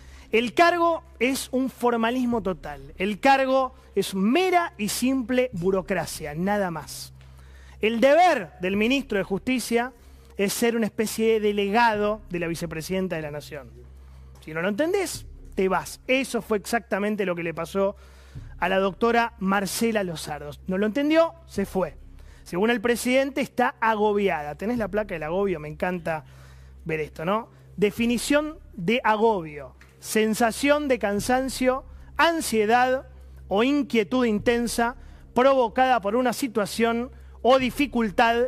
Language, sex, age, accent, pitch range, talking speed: Spanish, male, 30-49, Argentinian, 175-245 Hz, 135 wpm